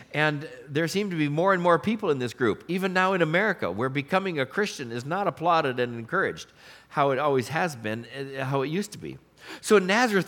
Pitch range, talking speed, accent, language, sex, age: 135-195 Hz, 220 wpm, American, English, male, 50-69